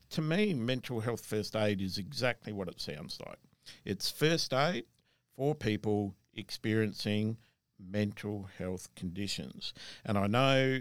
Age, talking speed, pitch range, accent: 50-69, 135 wpm, 100-130 Hz, Australian